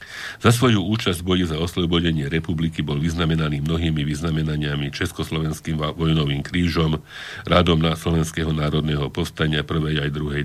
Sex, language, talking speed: male, Slovak, 130 wpm